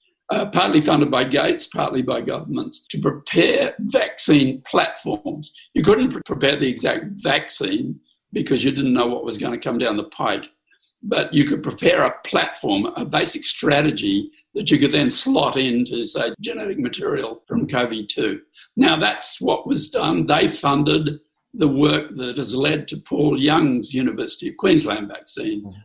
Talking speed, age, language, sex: 160 wpm, 60-79, English, male